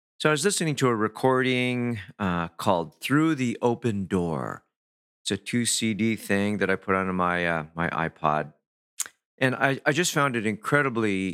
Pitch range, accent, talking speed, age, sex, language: 100-130 Hz, American, 175 wpm, 50-69, male, English